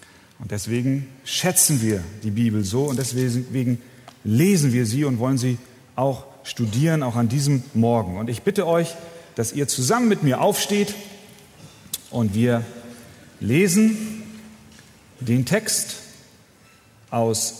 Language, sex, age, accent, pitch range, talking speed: German, male, 40-59, German, 115-155 Hz, 125 wpm